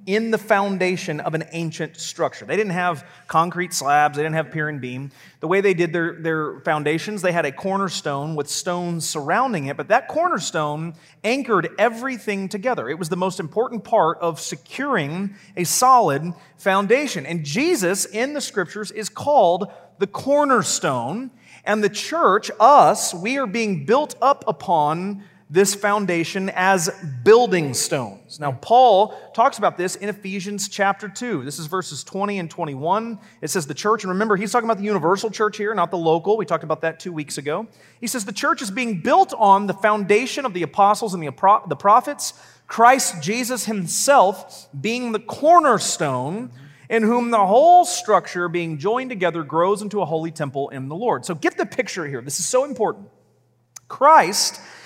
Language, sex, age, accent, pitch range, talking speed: English, male, 30-49, American, 165-220 Hz, 175 wpm